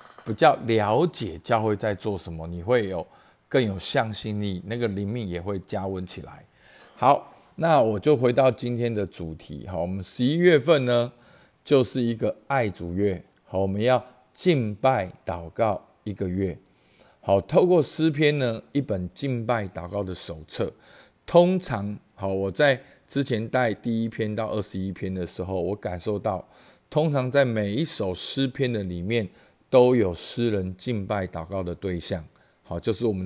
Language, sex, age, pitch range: Chinese, male, 50-69, 95-130 Hz